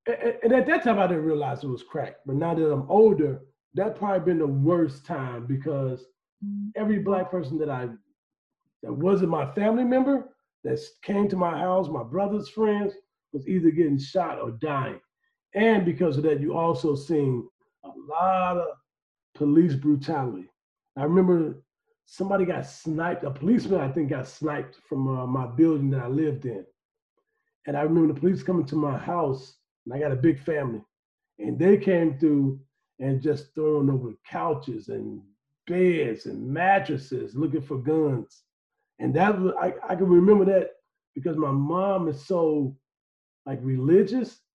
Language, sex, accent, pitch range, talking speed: English, male, American, 140-190 Hz, 165 wpm